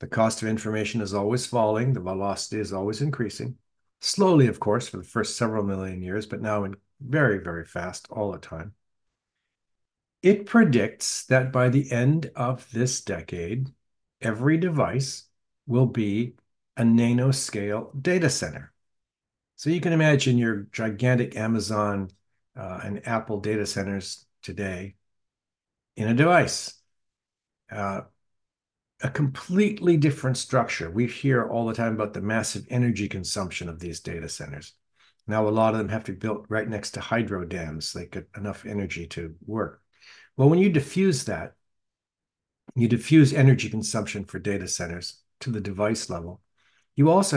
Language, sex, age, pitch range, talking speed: English, male, 60-79, 100-130 Hz, 150 wpm